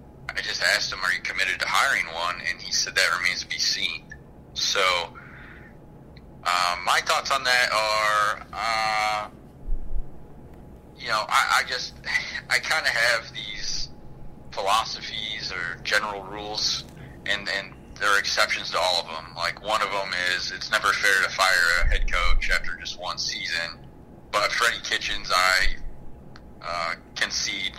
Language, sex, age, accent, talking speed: English, male, 30-49, American, 155 wpm